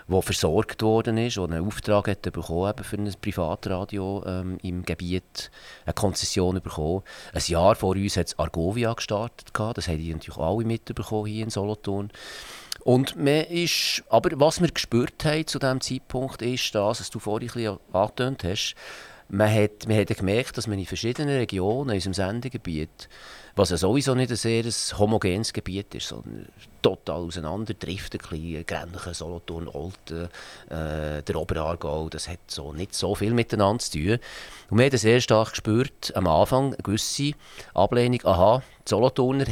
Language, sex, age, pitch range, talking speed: German, male, 40-59, 90-120 Hz, 160 wpm